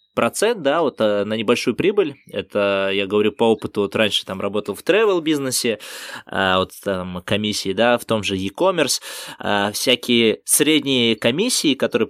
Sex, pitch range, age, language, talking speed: male, 100-120 Hz, 20-39, Russian, 145 wpm